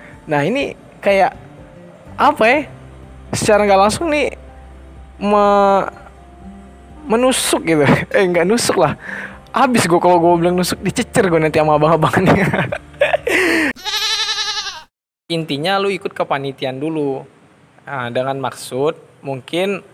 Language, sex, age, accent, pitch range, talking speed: Indonesian, male, 20-39, native, 120-160 Hz, 110 wpm